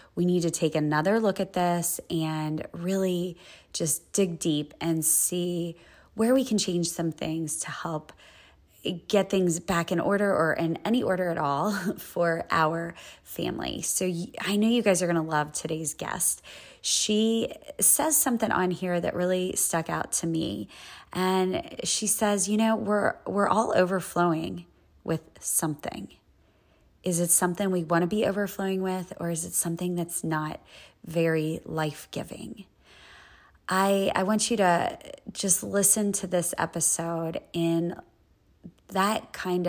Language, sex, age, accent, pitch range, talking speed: English, female, 20-39, American, 165-195 Hz, 150 wpm